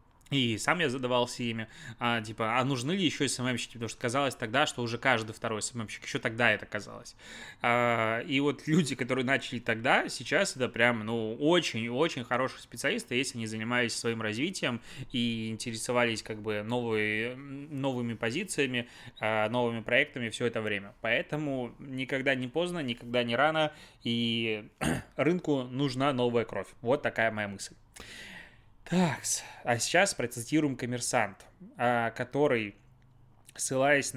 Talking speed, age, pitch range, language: 135 wpm, 20-39, 115-140 Hz, Russian